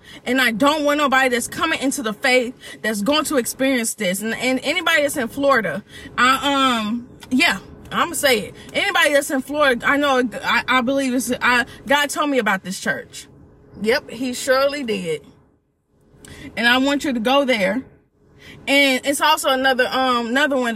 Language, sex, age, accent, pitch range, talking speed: English, female, 20-39, American, 235-285 Hz, 180 wpm